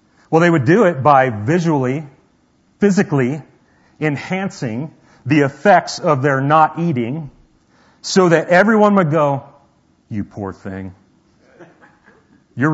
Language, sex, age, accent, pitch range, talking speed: English, male, 40-59, American, 100-135 Hz, 115 wpm